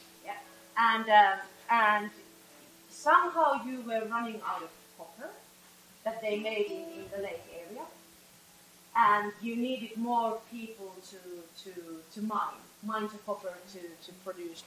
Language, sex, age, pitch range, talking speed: English, female, 30-49, 185-235 Hz, 140 wpm